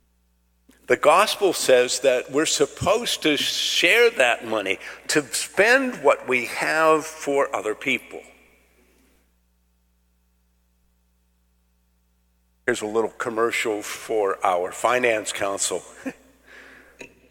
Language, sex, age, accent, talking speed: English, male, 50-69, American, 90 wpm